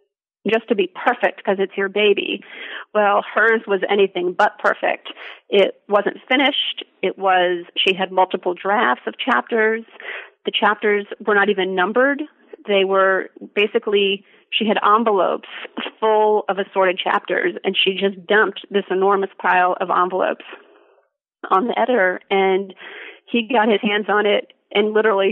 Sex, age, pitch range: female, 30-49, 195-225 Hz